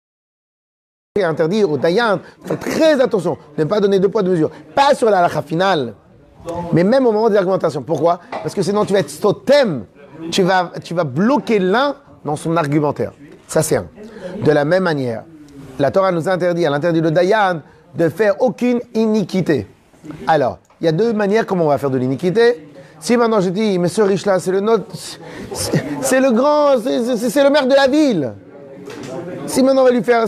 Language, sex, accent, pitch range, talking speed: French, male, French, 155-220 Hz, 195 wpm